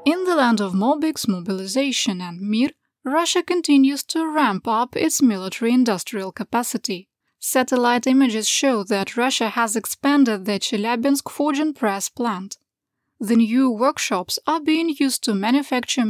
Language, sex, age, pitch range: English, female, 20-39, 210-275 Hz